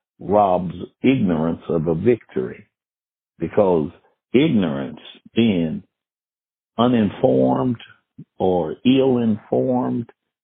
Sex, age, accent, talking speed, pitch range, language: male, 60-79, American, 65 wpm, 90-115 Hz, English